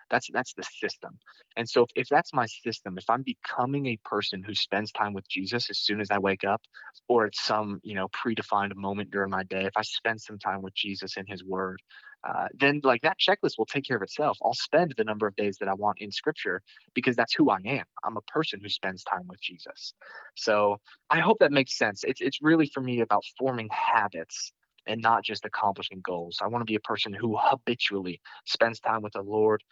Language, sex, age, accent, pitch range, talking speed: English, male, 20-39, American, 100-120 Hz, 230 wpm